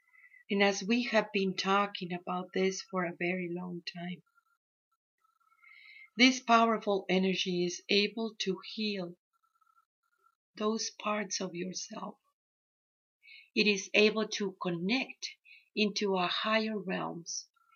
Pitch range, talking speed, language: 180-265 Hz, 110 wpm, English